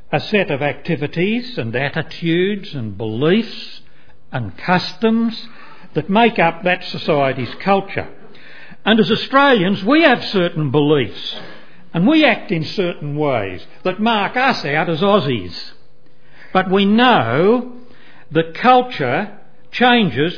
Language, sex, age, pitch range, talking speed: English, male, 60-79, 140-205 Hz, 120 wpm